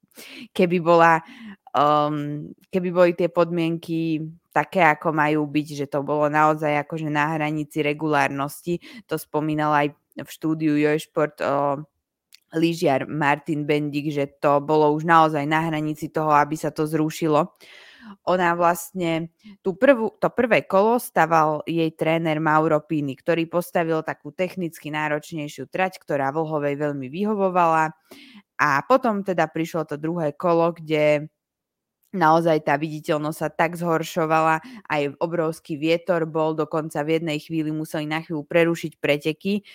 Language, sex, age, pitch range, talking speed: Slovak, female, 20-39, 150-175 Hz, 135 wpm